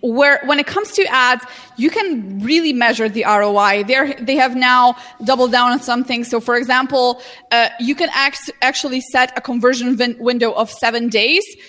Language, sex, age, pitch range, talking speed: English, female, 20-39, 230-275 Hz, 185 wpm